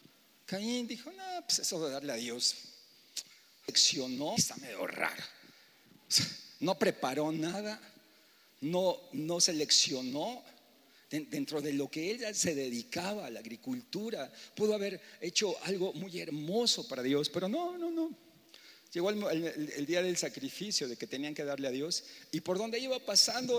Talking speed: 155 wpm